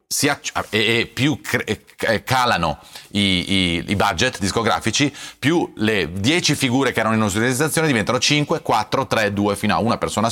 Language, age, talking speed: Italian, 30-49, 175 wpm